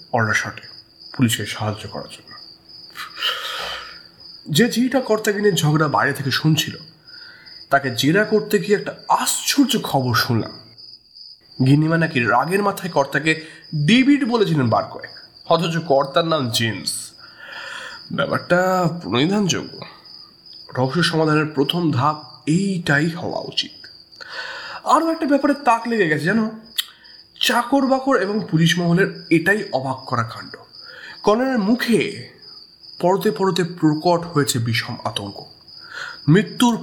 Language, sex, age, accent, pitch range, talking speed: English, male, 30-49, Indian, 130-205 Hz, 105 wpm